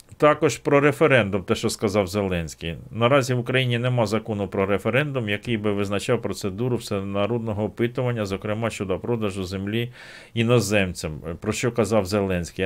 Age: 50-69